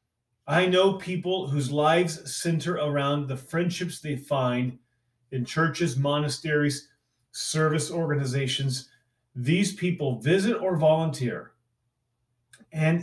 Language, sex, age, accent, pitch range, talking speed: English, male, 30-49, American, 120-155 Hz, 100 wpm